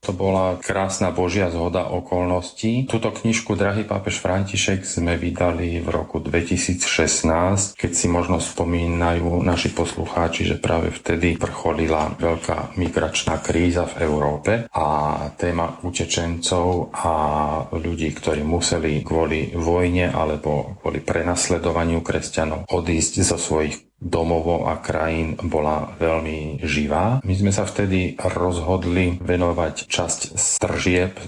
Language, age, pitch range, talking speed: Slovak, 40-59, 80-90 Hz, 115 wpm